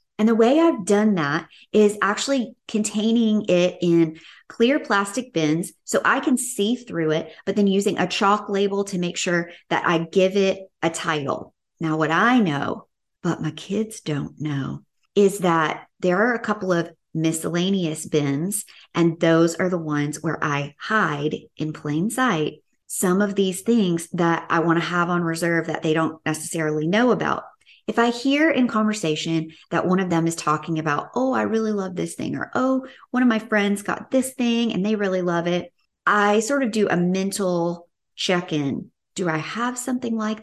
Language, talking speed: English, 185 wpm